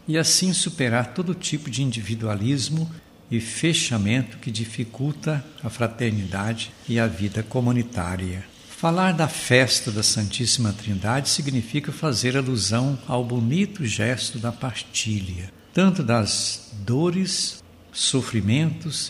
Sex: male